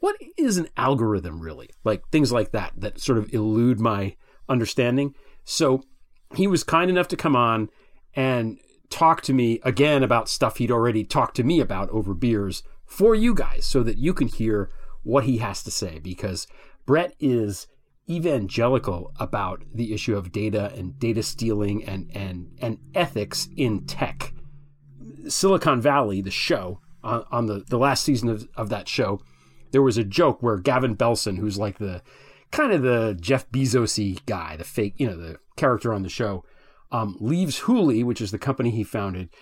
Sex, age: male, 40-59